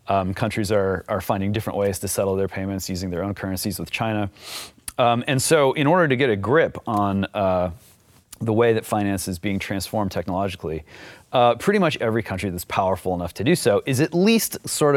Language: English